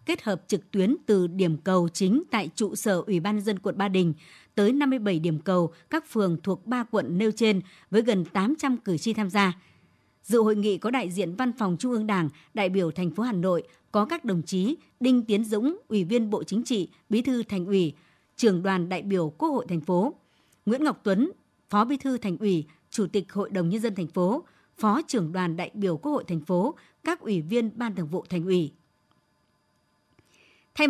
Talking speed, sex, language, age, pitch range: 215 wpm, male, Vietnamese, 60-79, 185-240 Hz